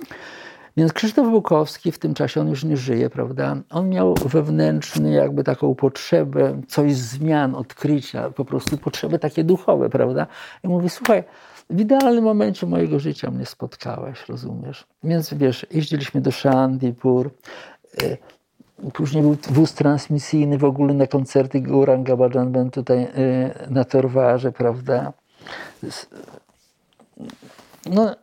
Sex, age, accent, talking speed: male, 50-69, native, 120 wpm